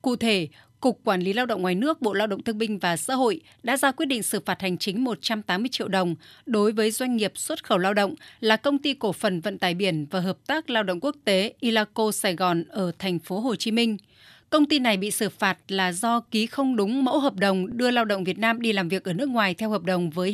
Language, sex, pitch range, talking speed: Vietnamese, female, 190-245 Hz, 265 wpm